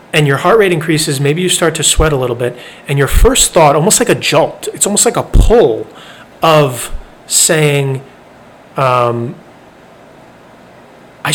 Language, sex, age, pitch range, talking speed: English, male, 30-49, 125-165 Hz, 160 wpm